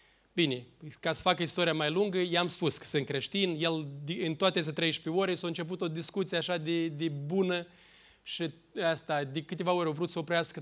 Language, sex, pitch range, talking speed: Romanian, male, 160-195 Hz, 200 wpm